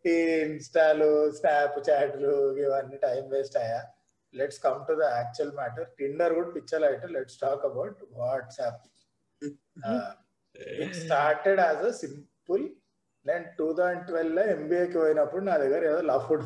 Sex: male